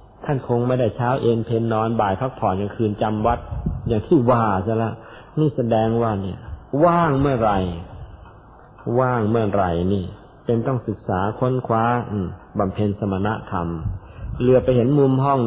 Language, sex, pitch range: Thai, male, 100-125 Hz